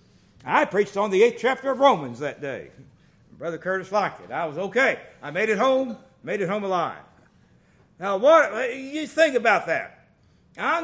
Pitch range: 185-245 Hz